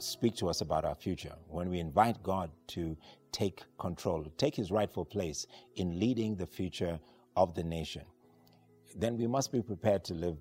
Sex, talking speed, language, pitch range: male, 180 wpm, English, 85-110 Hz